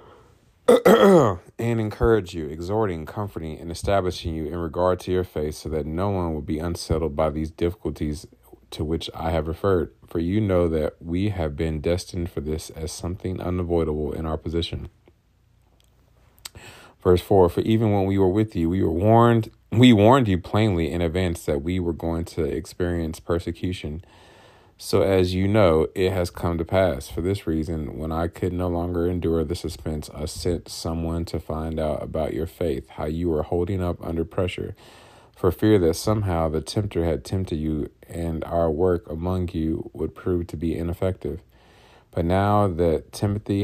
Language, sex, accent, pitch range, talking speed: English, male, American, 80-95 Hz, 175 wpm